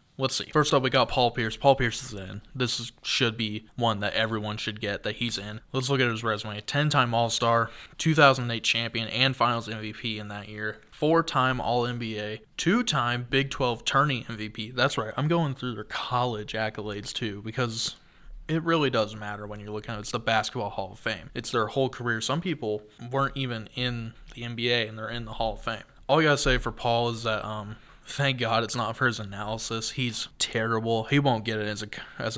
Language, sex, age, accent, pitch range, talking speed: English, male, 20-39, American, 110-130 Hz, 215 wpm